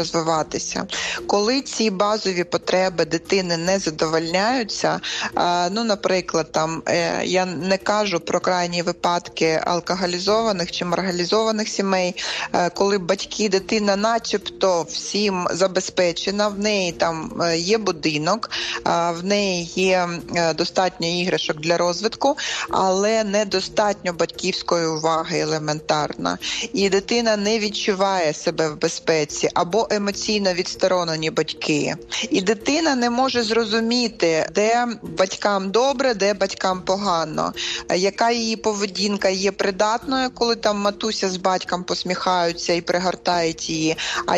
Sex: female